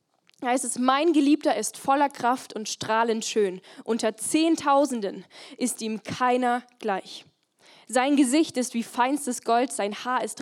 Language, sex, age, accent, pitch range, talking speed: German, female, 10-29, German, 215-255 Hz, 145 wpm